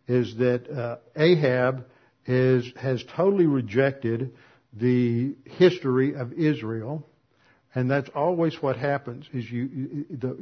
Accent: American